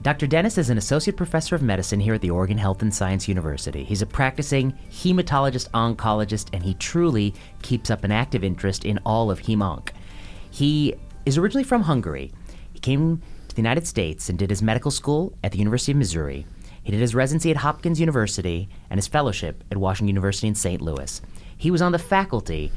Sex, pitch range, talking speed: male, 95-135 Hz, 200 wpm